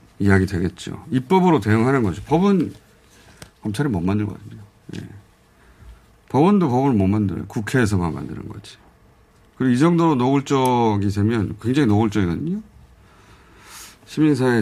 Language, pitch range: Korean, 95-130 Hz